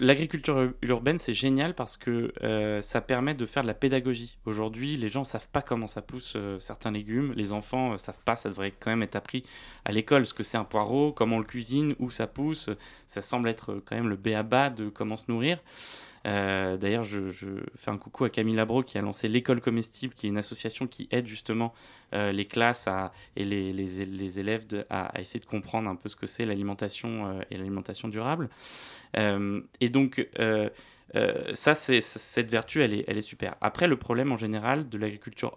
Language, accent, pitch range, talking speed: French, French, 105-130 Hz, 220 wpm